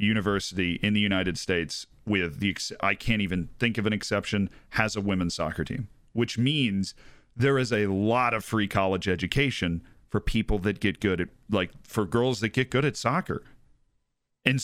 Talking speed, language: 180 wpm, English